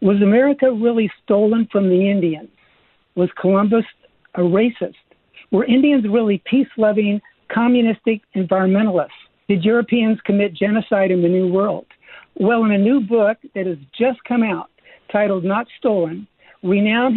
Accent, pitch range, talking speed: American, 195-235 Hz, 135 wpm